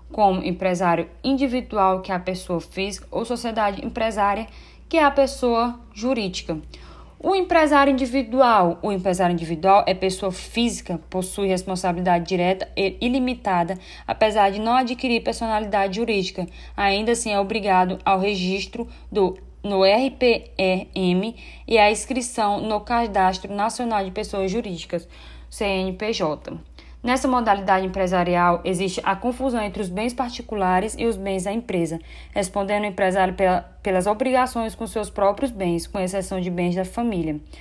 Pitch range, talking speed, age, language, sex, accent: 185-230 Hz, 135 wpm, 10-29, Portuguese, female, Brazilian